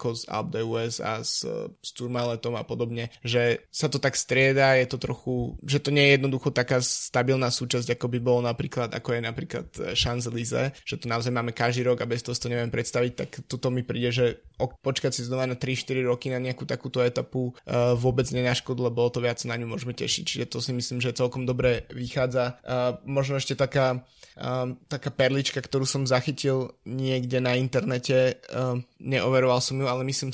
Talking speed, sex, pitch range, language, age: 190 wpm, male, 120-135 Hz, Slovak, 20-39